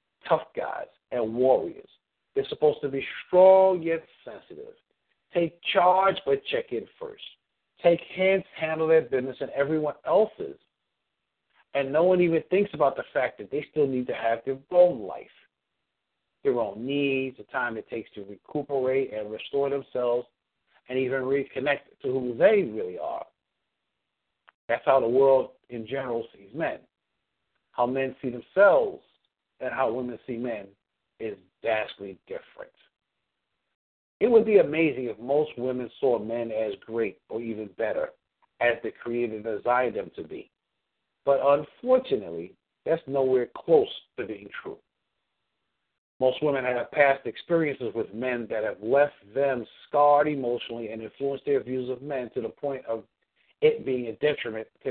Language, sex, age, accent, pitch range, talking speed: English, male, 60-79, American, 120-170 Hz, 150 wpm